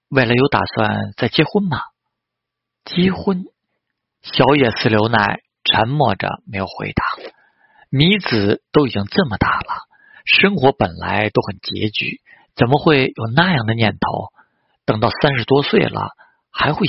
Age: 50-69